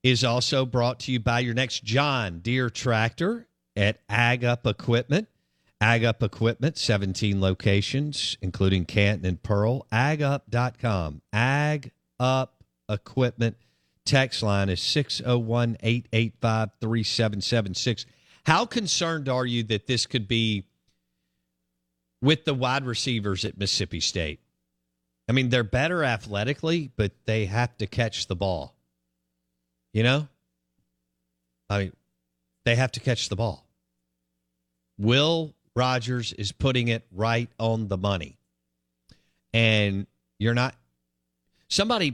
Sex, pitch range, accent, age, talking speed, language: male, 90-125 Hz, American, 50-69, 115 wpm, English